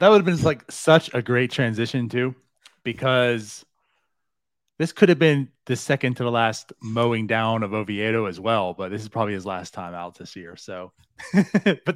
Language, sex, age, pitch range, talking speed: English, male, 30-49, 115-155 Hz, 190 wpm